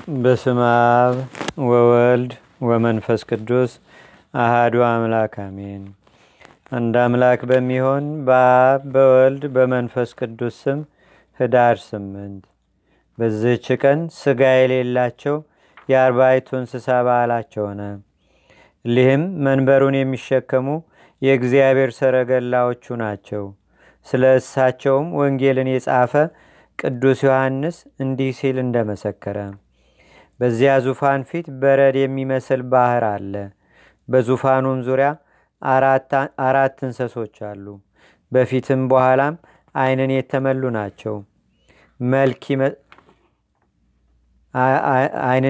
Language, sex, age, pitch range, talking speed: Amharic, male, 40-59, 115-135 Hz, 70 wpm